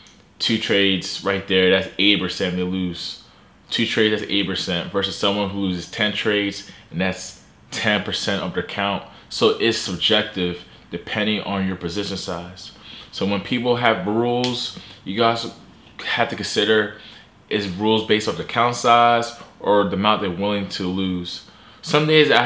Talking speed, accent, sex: 165 wpm, American, male